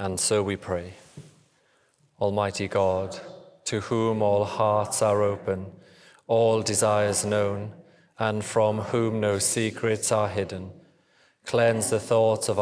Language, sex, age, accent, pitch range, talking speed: English, male, 40-59, British, 100-110 Hz, 125 wpm